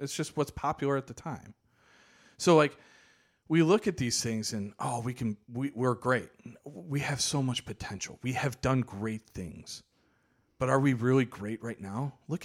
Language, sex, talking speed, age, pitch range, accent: English, male, 190 wpm, 40-59, 115-140 Hz, American